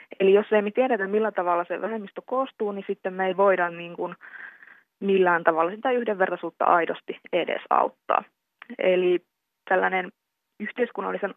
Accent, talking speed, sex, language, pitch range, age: native, 125 wpm, female, Finnish, 175-200 Hz, 20-39